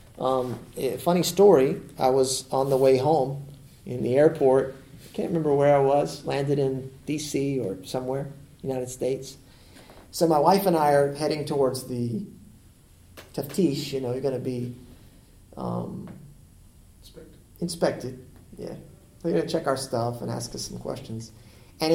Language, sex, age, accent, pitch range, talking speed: English, male, 40-59, American, 120-150 Hz, 160 wpm